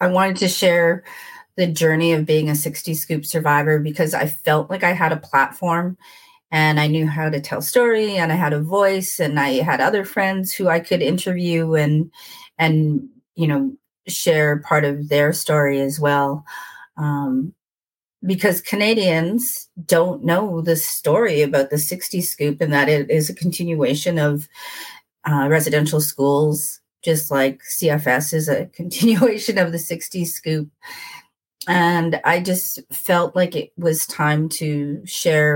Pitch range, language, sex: 150-180 Hz, English, female